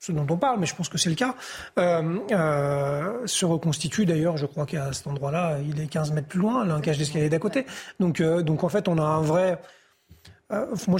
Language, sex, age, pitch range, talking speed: French, male, 30-49, 160-185 Hz, 235 wpm